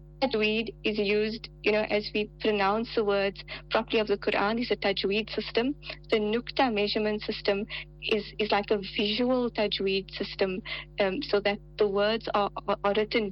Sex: female